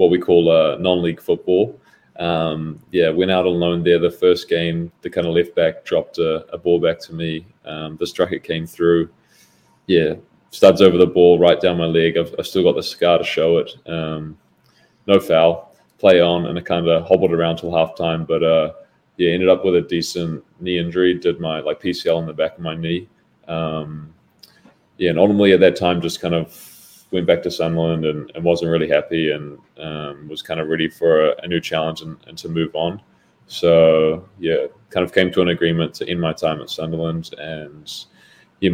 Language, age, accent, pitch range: English, 20-39, Australian, 80-85 Hz